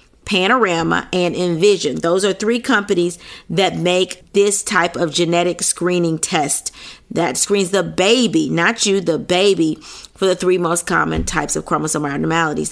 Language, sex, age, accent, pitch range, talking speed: English, female, 40-59, American, 180-240 Hz, 150 wpm